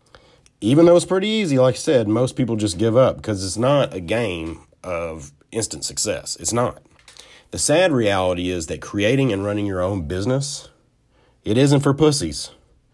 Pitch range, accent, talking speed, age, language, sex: 95-145 Hz, American, 175 wpm, 40-59, English, male